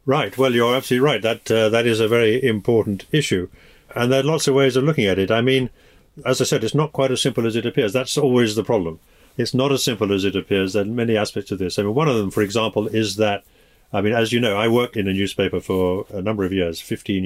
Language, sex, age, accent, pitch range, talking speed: English, male, 50-69, British, 105-130 Hz, 270 wpm